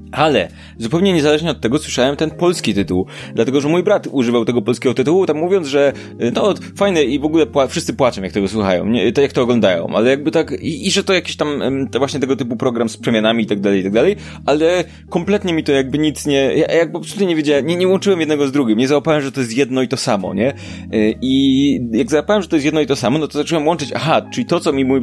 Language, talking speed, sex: Polish, 240 wpm, male